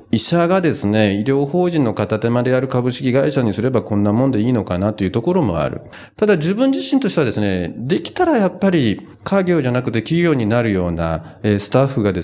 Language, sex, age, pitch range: Japanese, male, 40-59, 95-145 Hz